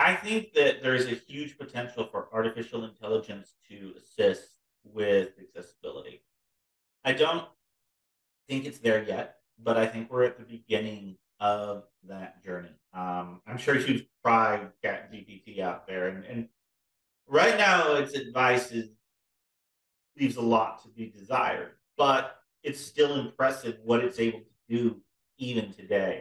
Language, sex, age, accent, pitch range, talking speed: English, male, 40-59, American, 105-130 Hz, 145 wpm